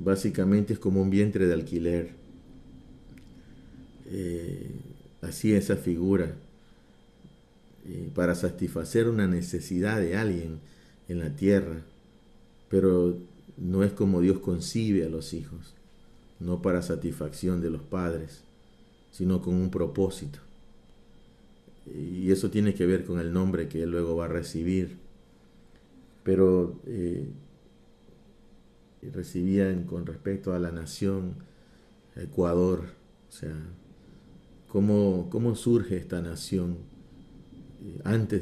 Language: Spanish